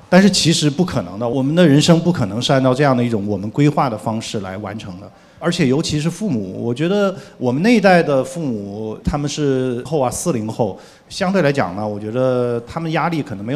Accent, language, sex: native, Chinese, male